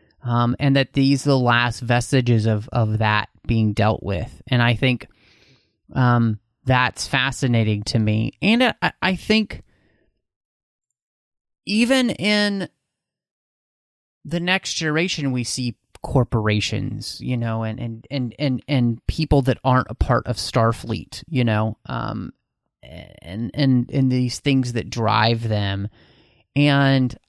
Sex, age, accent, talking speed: male, 30-49, American, 130 wpm